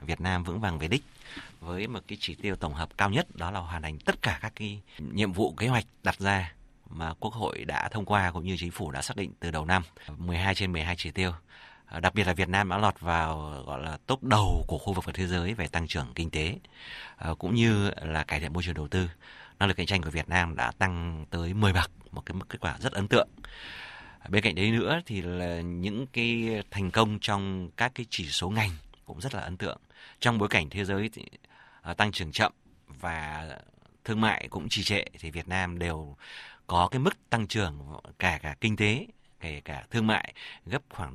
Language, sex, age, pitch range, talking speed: Vietnamese, male, 30-49, 85-105 Hz, 225 wpm